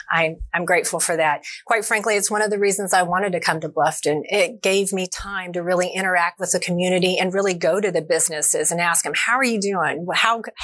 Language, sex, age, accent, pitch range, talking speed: English, female, 30-49, American, 190-235 Hz, 235 wpm